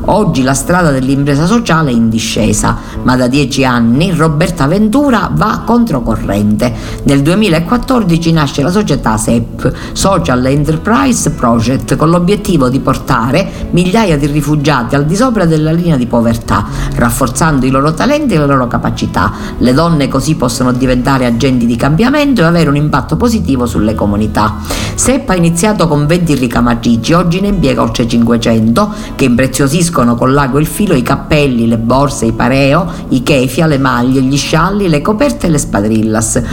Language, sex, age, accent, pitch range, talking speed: Italian, female, 50-69, native, 120-170 Hz, 160 wpm